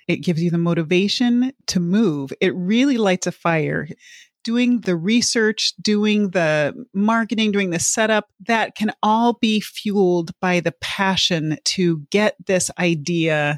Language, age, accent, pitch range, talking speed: English, 30-49, American, 170-215 Hz, 145 wpm